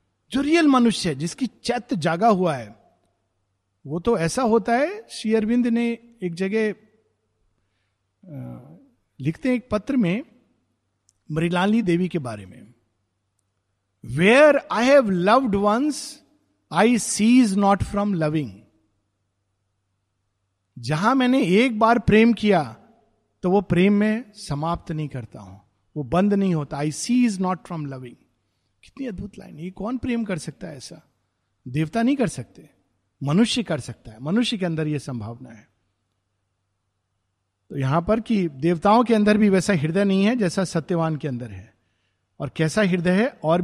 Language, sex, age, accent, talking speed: Hindi, male, 50-69, native, 150 wpm